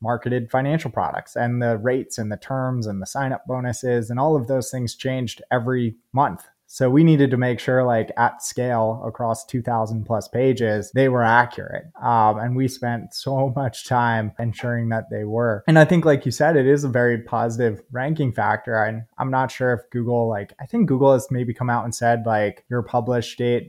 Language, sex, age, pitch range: English, male, 20-39, 115-135 Hz